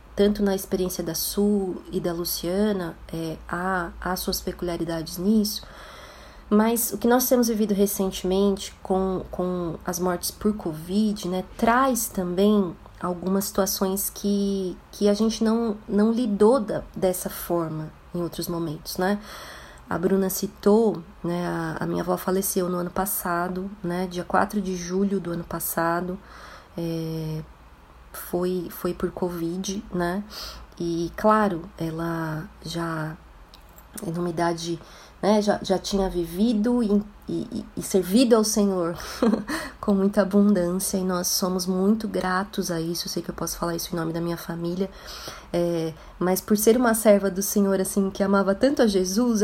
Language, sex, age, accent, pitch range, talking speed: Portuguese, female, 20-39, Brazilian, 175-205 Hz, 150 wpm